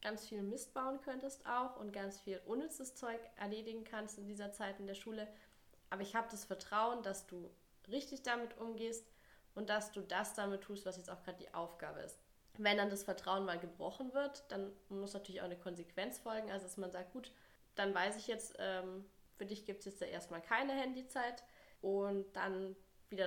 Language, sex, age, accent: German, female, 20-39, German